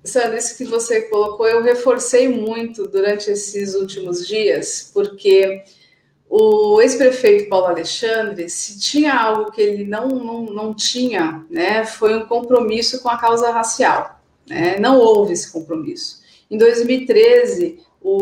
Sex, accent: female, Brazilian